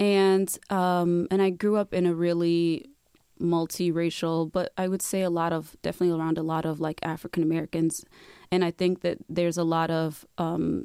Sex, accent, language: female, American, English